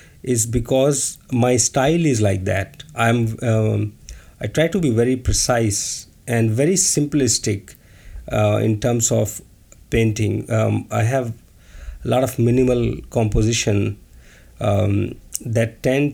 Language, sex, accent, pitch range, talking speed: English, male, Indian, 100-125 Hz, 125 wpm